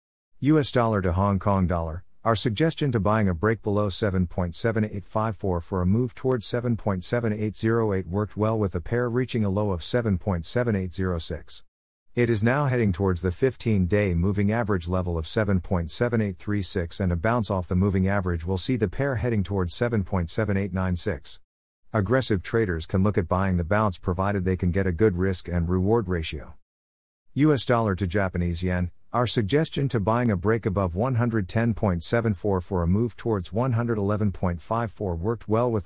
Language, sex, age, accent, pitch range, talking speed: English, male, 50-69, American, 90-115 Hz, 155 wpm